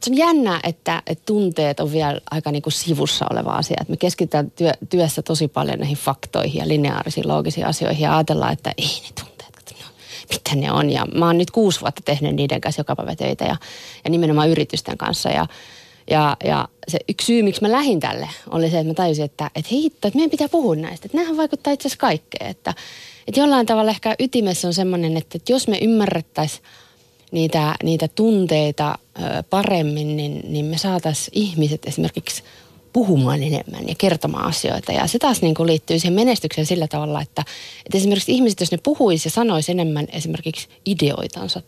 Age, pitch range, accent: 30-49, 150-200 Hz, native